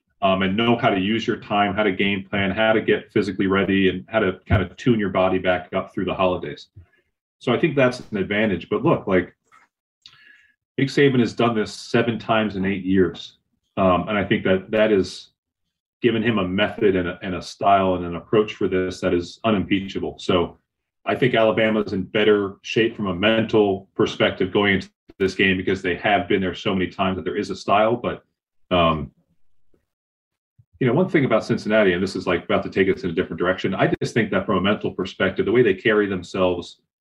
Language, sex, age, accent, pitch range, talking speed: English, male, 30-49, American, 90-110 Hz, 215 wpm